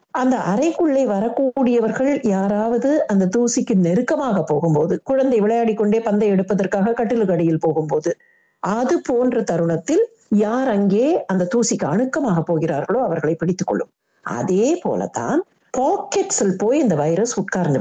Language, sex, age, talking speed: Tamil, female, 50-69, 105 wpm